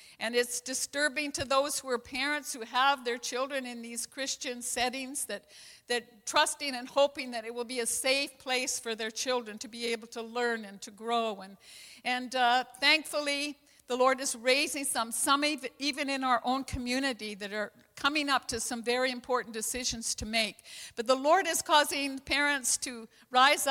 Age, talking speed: 60-79, 185 wpm